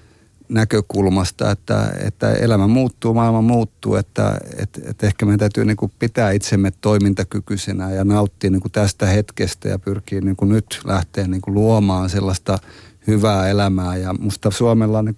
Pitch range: 100-110 Hz